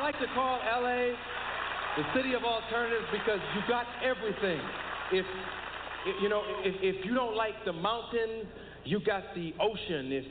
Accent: American